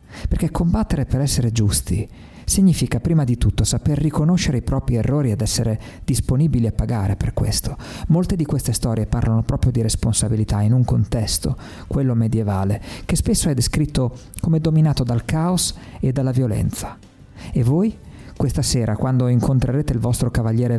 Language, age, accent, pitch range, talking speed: Italian, 50-69, native, 105-130 Hz, 155 wpm